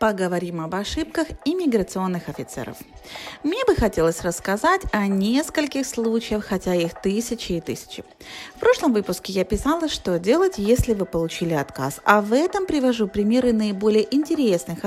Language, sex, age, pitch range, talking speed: Russian, female, 30-49, 185-280 Hz, 140 wpm